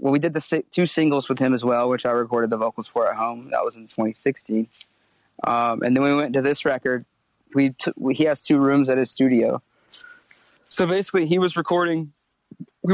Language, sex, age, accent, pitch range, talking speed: English, male, 20-39, American, 125-145 Hz, 220 wpm